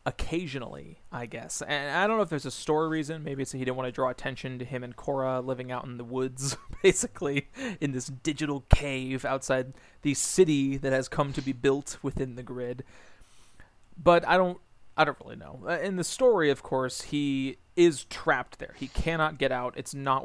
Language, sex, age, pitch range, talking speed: English, male, 30-49, 125-150 Hz, 205 wpm